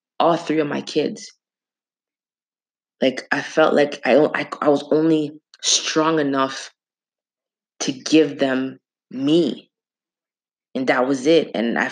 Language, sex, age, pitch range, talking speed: English, female, 20-39, 135-155 Hz, 130 wpm